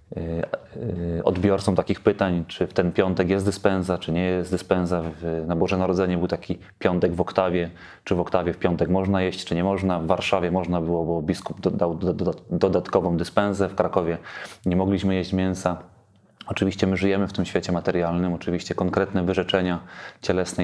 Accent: native